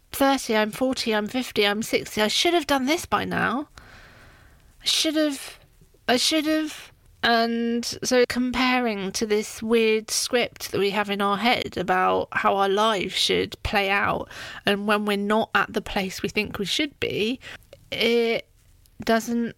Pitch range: 200-250 Hz